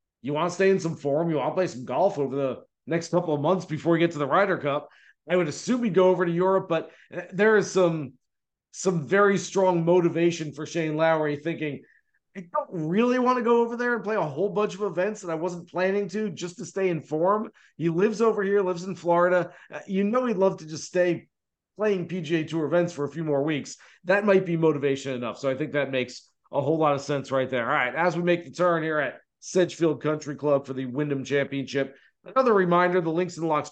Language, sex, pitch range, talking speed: English, male, 150-195 Hz, 235 wpm